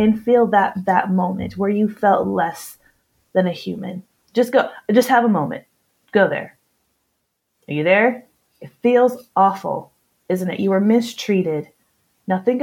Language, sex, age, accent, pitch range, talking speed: English, female, 20-39, American, 190-235 Hz, 155 wpm